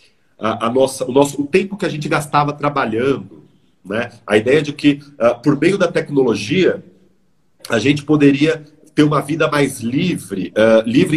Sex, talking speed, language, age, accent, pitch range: male, 165 wpm, Portuguese, 40-59, Brazilian, 130-170 Hz